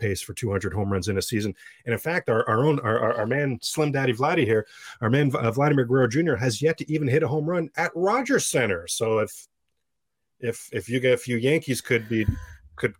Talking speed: 235 wpm